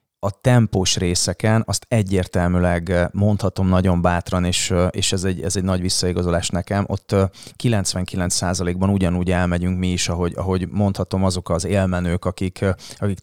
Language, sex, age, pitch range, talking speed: Hungarian, male, 30-49, 90-105 Hz, 140 wpm